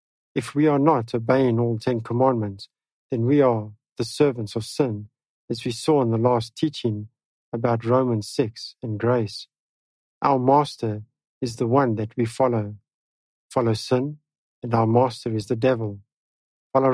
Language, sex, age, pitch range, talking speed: English, male, 50-69, 115-135 Hz, 155 wpm